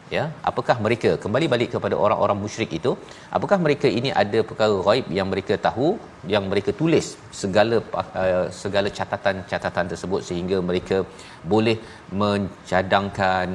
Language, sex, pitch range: Malayalam, male, 95-115 Hz